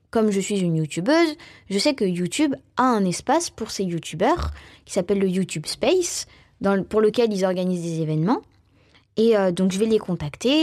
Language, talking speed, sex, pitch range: French, 200 wpm, female, 185-260 Hz